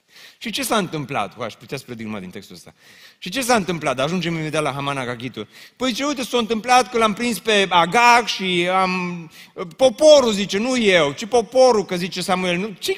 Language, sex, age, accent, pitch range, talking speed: Romanian, male, 30-49, native, 140-220 Hz, 205 wpm